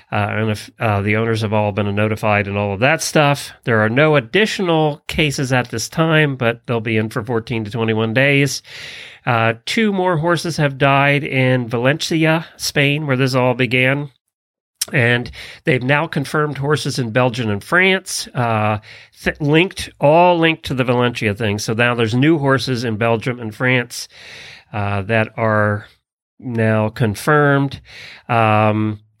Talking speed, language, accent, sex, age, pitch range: 160 wpm, English, American, male, 40-59, 115-150 Hz